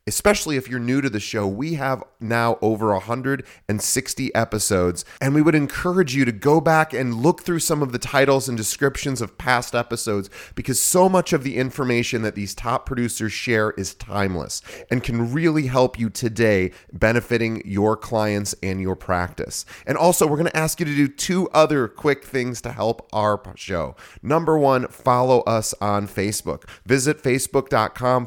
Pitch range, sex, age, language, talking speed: 105-135 Hz, male, 30-49, English, 175 wpm